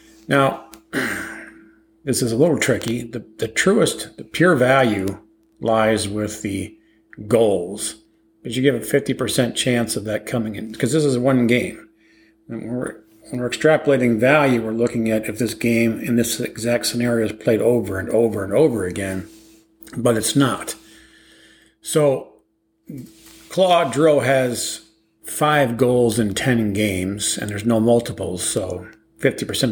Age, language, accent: 50-69, English, American